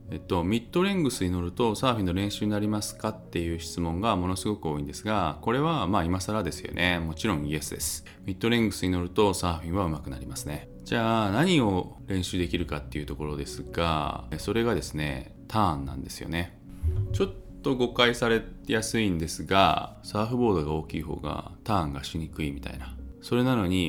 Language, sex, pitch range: Japanese, male, 80-110 Hz